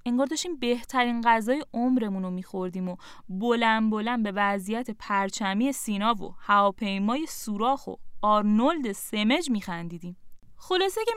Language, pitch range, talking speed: Persian, 205-300 Hz, 120 wpm